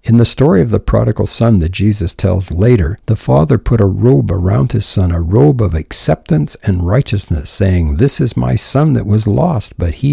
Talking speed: 205 wpm